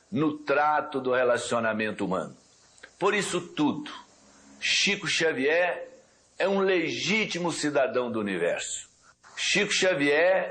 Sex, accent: male, Brazilian